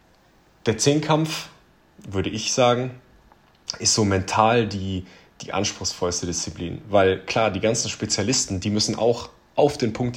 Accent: German